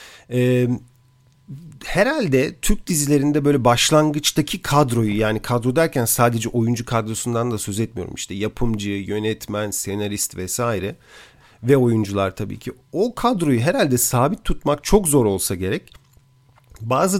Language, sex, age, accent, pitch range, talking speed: Turkish, male, 40-59, native, 120-155 Hz, 120 wpm